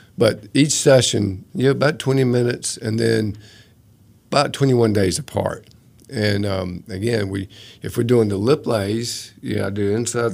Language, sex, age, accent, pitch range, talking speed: English, male, 50-69, American, 100-115 Hz, 170 wpm